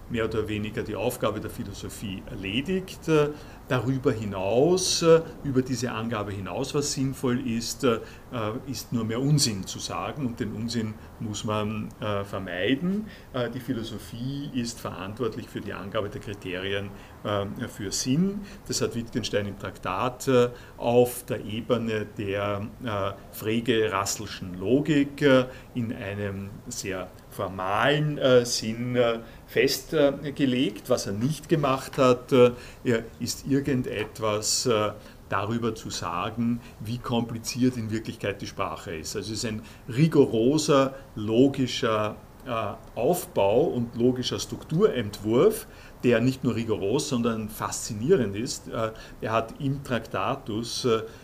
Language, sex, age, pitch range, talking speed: German, male, 50-69, 105-130 Hz, 115 wpm